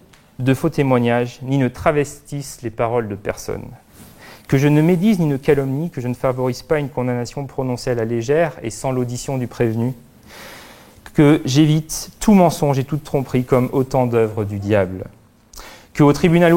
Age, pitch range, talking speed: 30-49, 120-155 Hz, 175 wpm